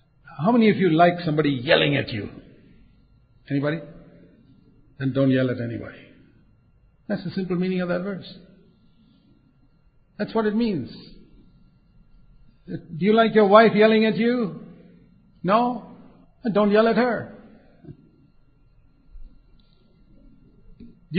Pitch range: 140-225 Hz